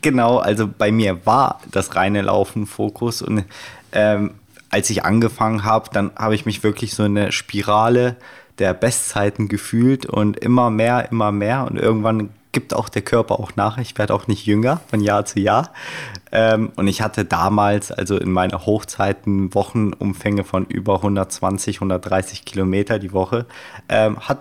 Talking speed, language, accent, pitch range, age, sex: 160 wpm, German, German, 105-120 Hz, 30-49, male